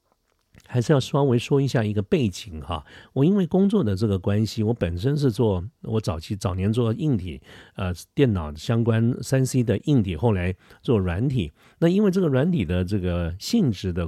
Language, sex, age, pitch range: Chinese, male, 50-69, 95-125 Hz